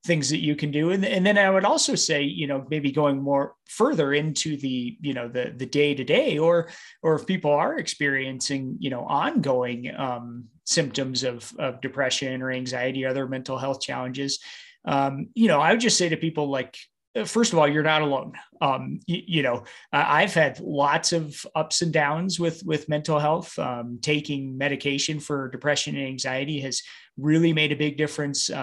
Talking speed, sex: 190 wpm, male